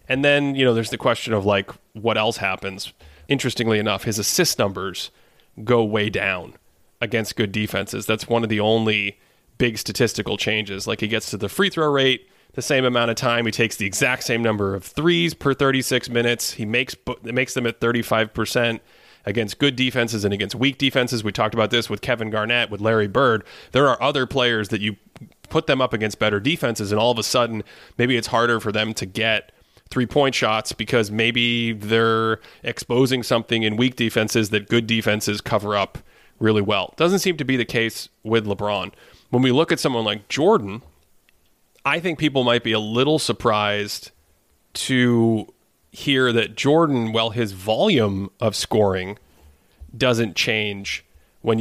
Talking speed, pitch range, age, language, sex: 180 wpm, 105-120 Hz, 20-39, English, male